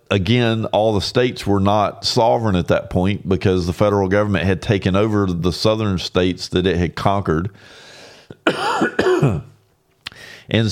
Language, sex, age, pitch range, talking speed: English, male, 50-69, 95-115 Hz, 140 wpm